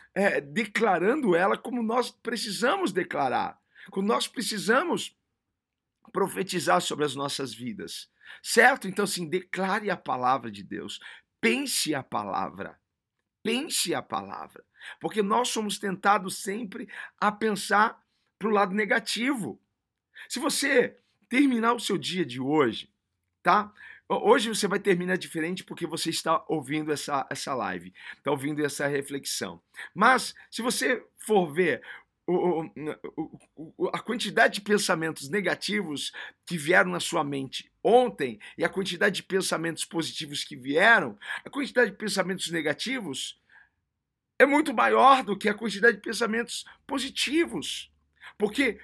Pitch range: 160-230 Hz